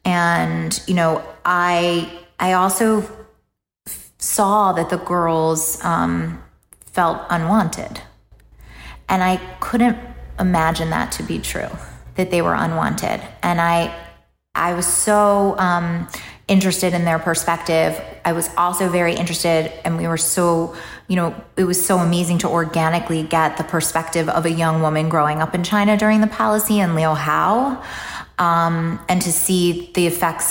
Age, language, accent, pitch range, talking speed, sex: 20-39, English, American, 165-195 Hz, 150 wpm, female